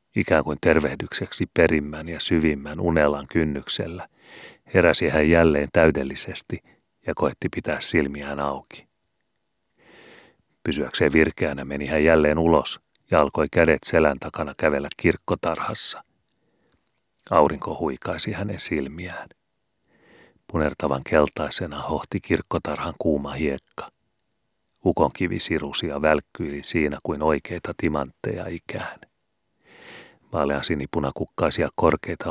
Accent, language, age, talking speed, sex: native, Finnish, 40-59, 95 wpm, male